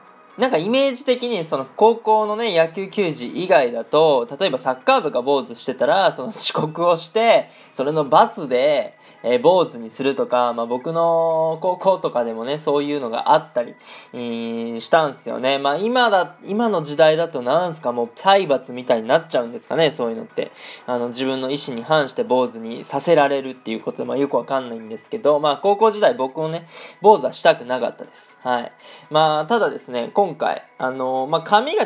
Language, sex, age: Japanese, male, 20-39